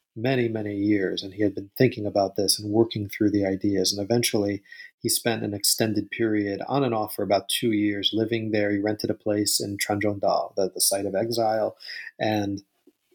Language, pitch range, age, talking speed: English, 100-125 Hz, 40-59, 200 wpm